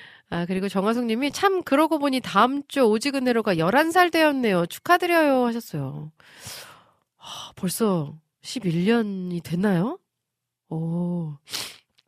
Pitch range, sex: 155-245 Hz, female